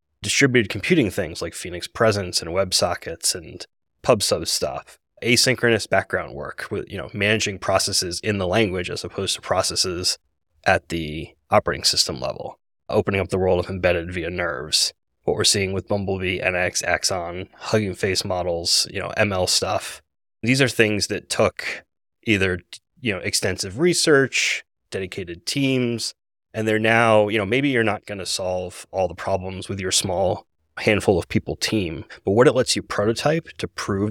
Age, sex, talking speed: 20-39, male, 165 wpm